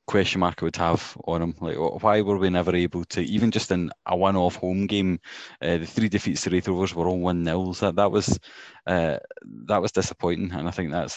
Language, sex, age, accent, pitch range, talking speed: English, male, 20-39, British, 85-100 Hz, 230 wpm